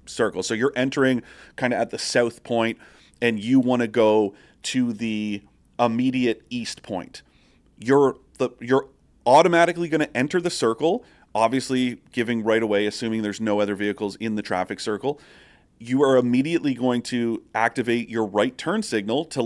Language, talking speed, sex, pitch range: English, 165 wpm, male, 115-150 Hz